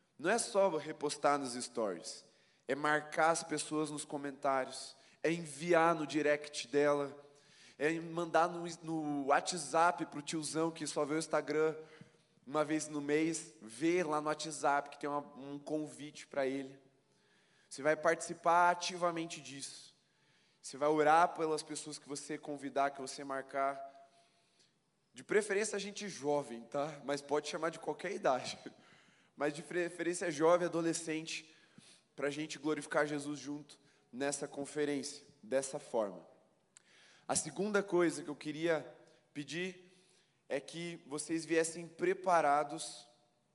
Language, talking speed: Portuguese, 140 wpm